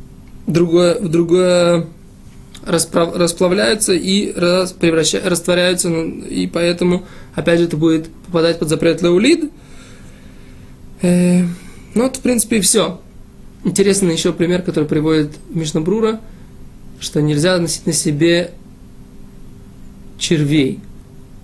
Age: 20-39